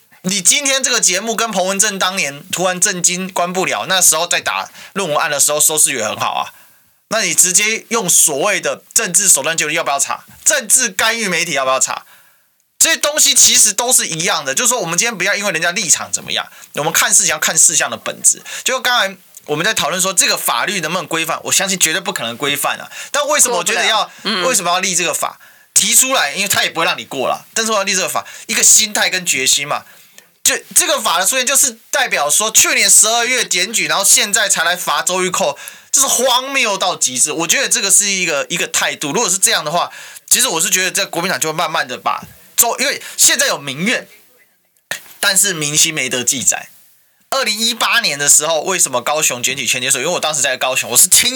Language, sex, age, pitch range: Chinese, male, 20-39, 165-230 Hz